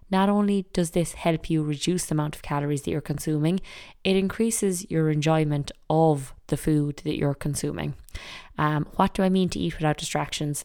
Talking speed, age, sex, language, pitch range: 185 wpm, 20-39, female, English, 150-180 Hz